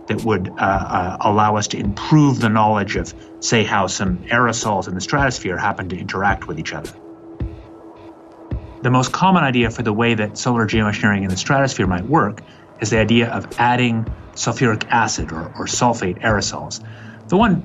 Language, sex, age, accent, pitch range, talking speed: English, male, 30-49, American, 100-125 Hz, 175 wpm